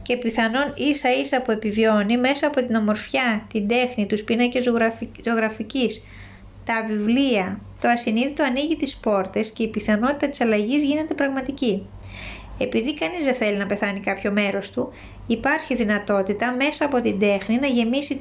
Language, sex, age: Greek, female, 20-39